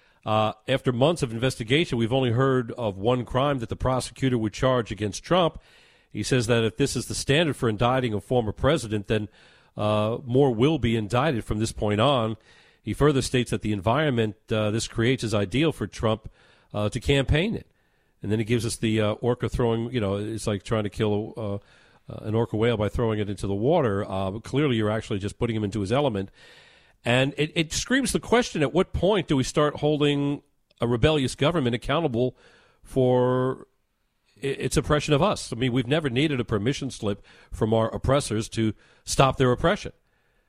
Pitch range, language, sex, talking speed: 110-135 Hz, English, male, 195 wpm